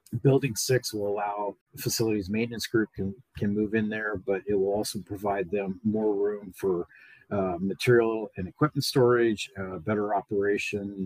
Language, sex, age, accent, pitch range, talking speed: English, male, 40-59, American, 100-120 Hz, 155 wpm